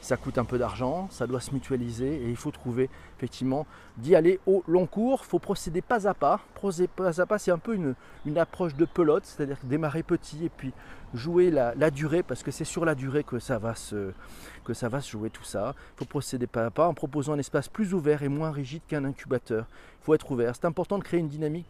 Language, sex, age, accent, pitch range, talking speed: French, male, 40-59, French, 120-165 Hz, 250 wpm